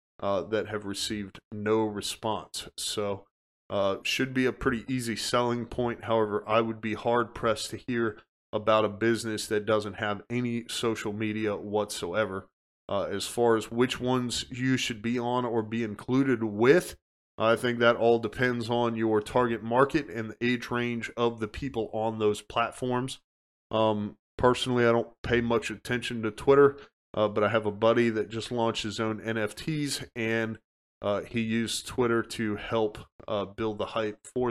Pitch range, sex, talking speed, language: 105-125 Hz, male, 170 wpm, English